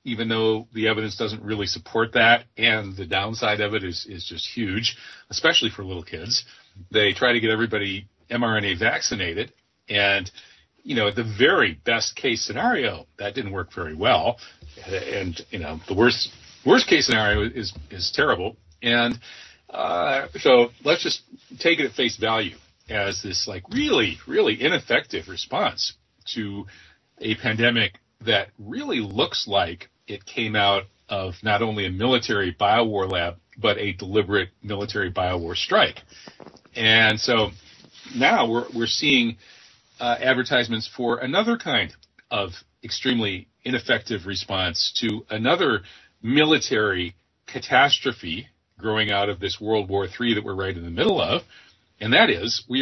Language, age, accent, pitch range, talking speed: English, 40-59, American, 100-120 Hz, 150 wpm